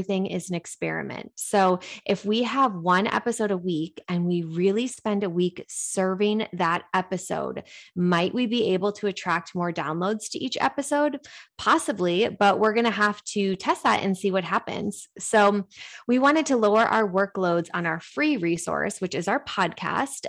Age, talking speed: 20-39, 175 wpm